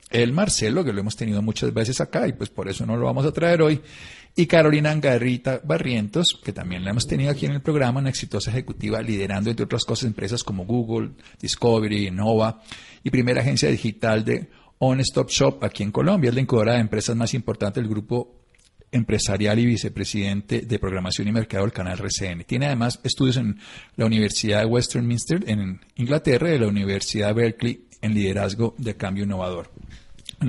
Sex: male